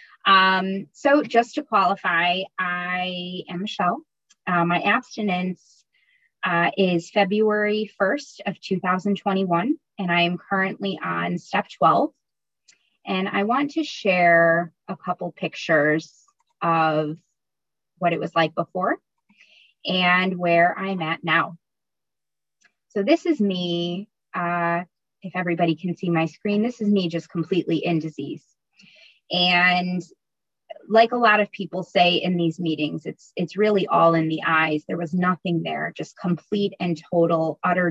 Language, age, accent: English, 20-39, American